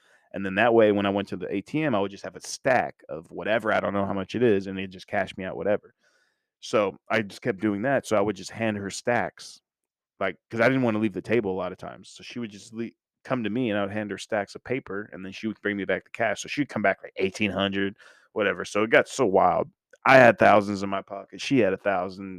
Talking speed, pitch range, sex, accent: 280 wpm, 100-125 Hz, male, American